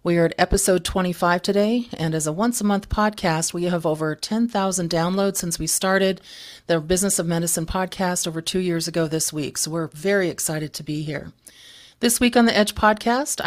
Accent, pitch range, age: American, 170-195 Hz, 40-59